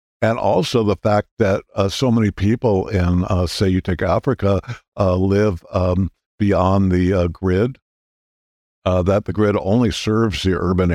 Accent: American